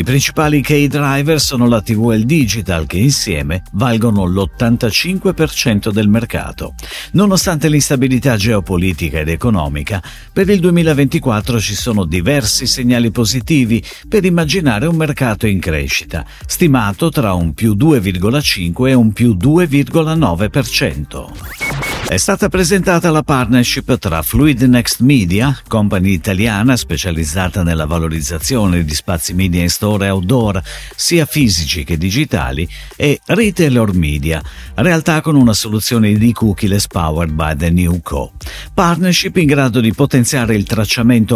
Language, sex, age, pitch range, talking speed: Italian, male, 50-69, 90-145 Hz, 130 wpm